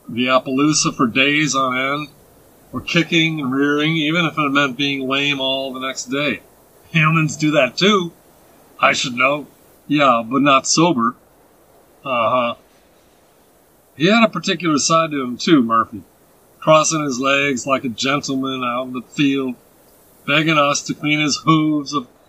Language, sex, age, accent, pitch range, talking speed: English, male, 40-59, American, 130-155 Hz, 160 wpm